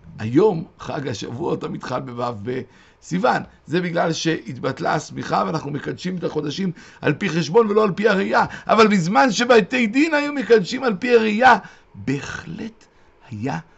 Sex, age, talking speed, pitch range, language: male, 60-79, 140 wpm, 135-205 Hz, Hebrew